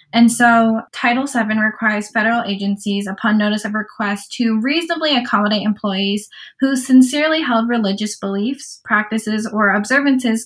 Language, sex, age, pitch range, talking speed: English, female, 10-29, 205-240 Hz, 130 wpm